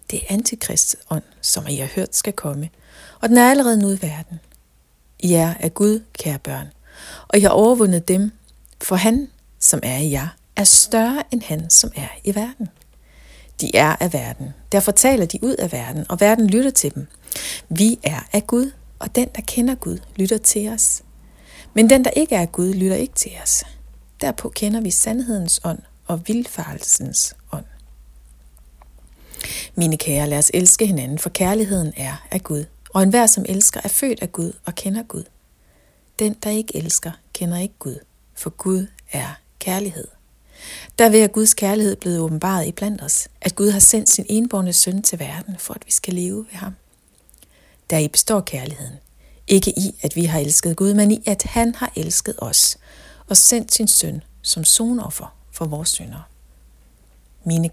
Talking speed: 180 wpm